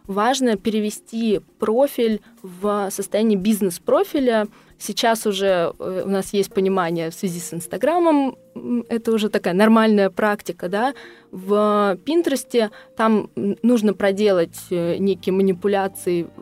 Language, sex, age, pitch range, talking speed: Russian, female, 20-39, 190-235 Hz, 105 wpm